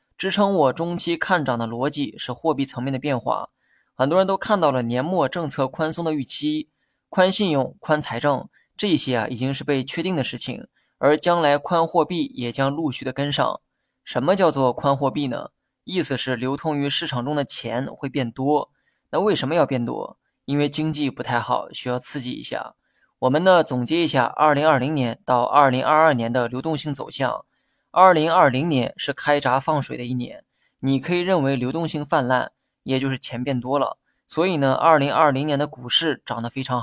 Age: 20-39